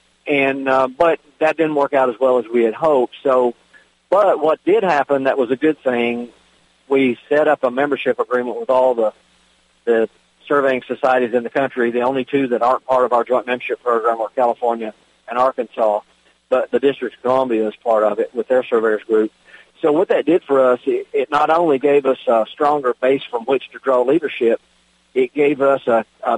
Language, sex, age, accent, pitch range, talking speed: English, male, 50-69, American, 120-140 Hz, 205 wpm